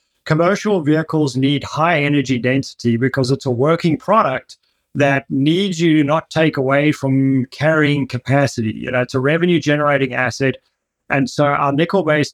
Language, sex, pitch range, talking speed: English, male, 130-155 Hz, 150 wpm